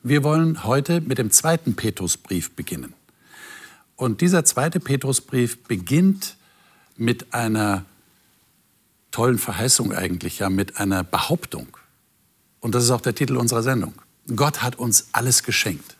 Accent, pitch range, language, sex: German, 100-140 Hz, German, male